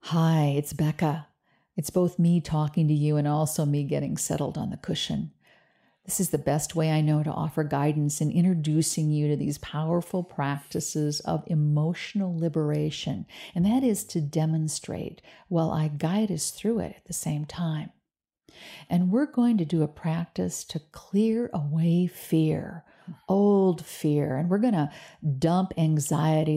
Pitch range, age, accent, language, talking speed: 155-175 Hz, 50-69, American, English, 160 wpm